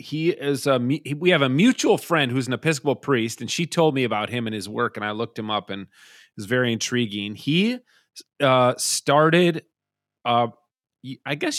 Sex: male